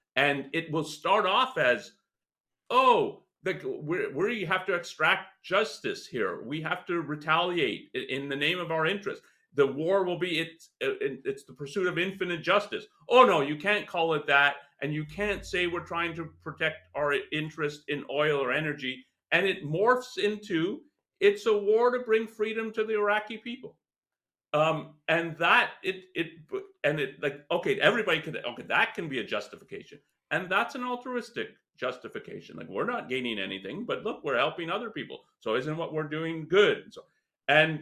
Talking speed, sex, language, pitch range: 175 wpm, male, English, 145-205 Hz